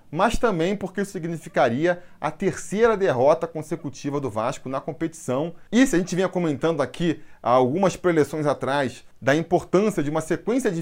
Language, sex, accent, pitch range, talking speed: Portuguese, male, Brazilian, 145-185 Hz, 160 wpm